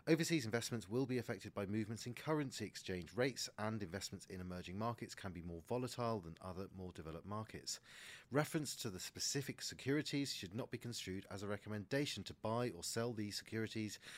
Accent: British